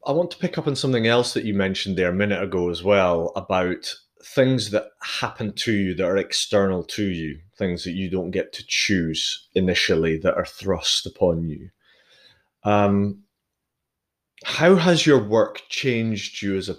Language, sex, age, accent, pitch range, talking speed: English, male, 30-49, British, 85-110 Hz, 180 wpm